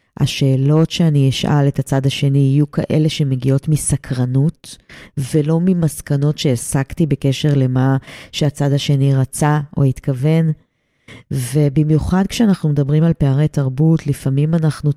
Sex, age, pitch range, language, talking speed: female, 30-49, 135-160 Hz, Hebrew, 110 wpm